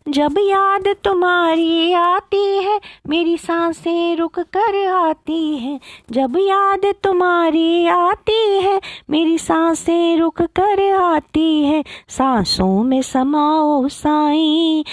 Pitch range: 270-330 Hz